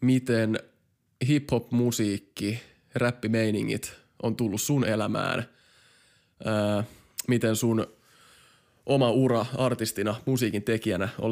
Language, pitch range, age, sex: Finnish, 110-125 Hz, 20-39, male